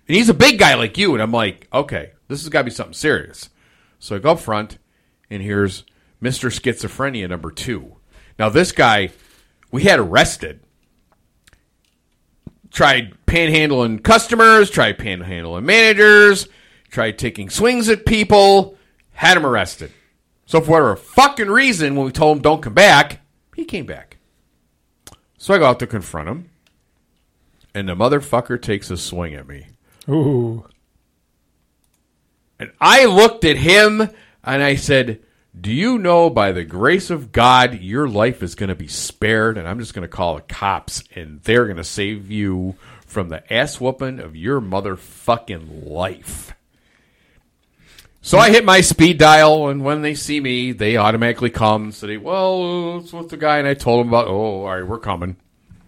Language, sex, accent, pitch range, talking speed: English, male, American, 95-160 Hz, 165 wpm